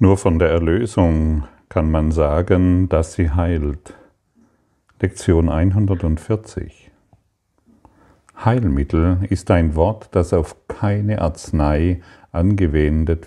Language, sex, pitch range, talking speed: German, male, 80-100 Hz, 95 wpm